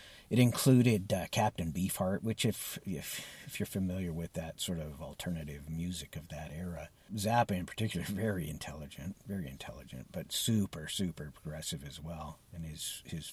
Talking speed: 160 wpm